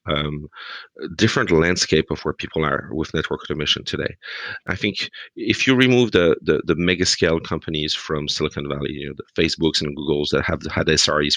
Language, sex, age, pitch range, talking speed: English, male, 40-59, 75-90 Hz, 185 wpm